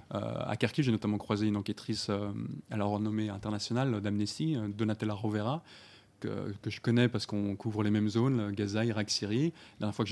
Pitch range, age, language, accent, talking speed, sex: 105-130 Hz, 20-39, French, French, 195 wpm, male